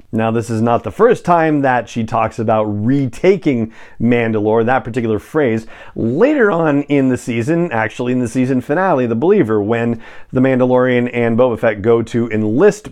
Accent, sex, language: American, male, English